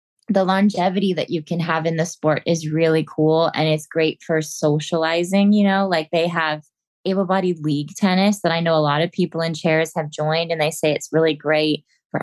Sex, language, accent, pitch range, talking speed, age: female, English, American, 160-185 Hz, 210 wpm, 20-39